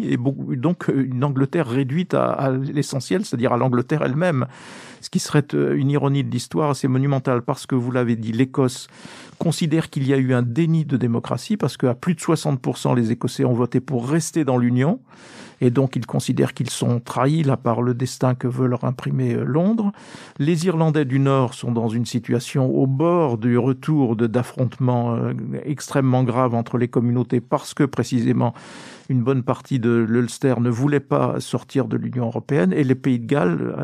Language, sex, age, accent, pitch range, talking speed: French, male, 50-69, French, 125-145 Hz, 180 wpm